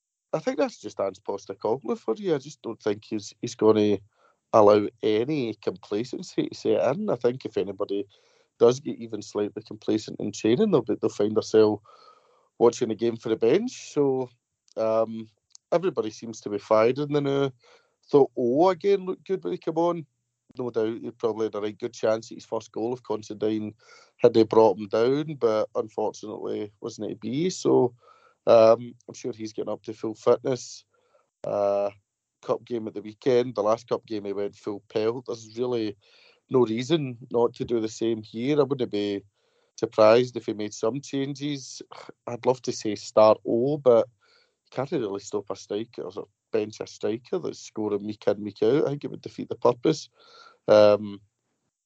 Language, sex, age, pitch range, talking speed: English, male, 30-49, 110-140 Hz, 185 wpm